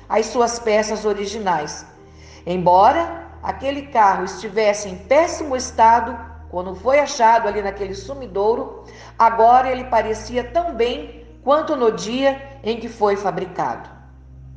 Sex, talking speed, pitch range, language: female, 120 wpm, 190-275 Hz, Portuguese